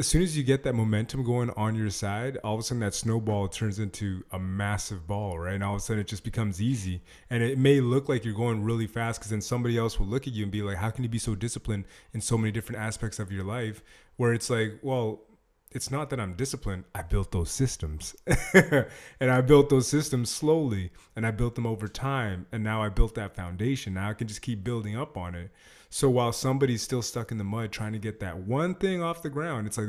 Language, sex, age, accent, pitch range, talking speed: English, male, 20-39, American, 105-130 Hz, 250 wpm